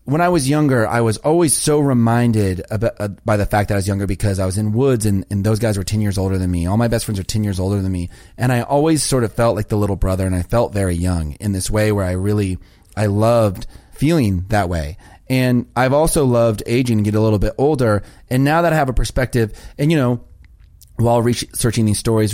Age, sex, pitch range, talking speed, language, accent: 30-49, male, 100-120 Hz, 250 wpm, English, American